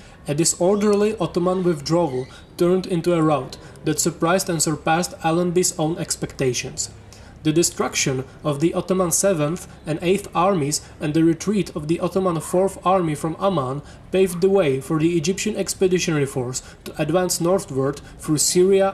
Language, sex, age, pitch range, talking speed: English, male, 20-39, 145-185 Hz, 150 wpm